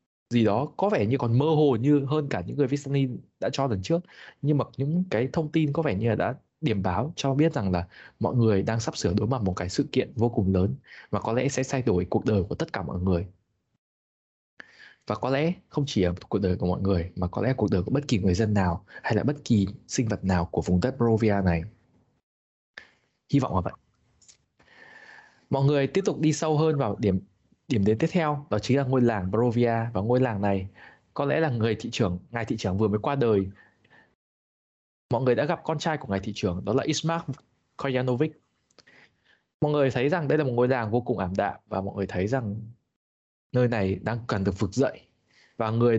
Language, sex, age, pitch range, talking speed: Vietnamese, male, 20-39, 100-145 Hz, 230 wpm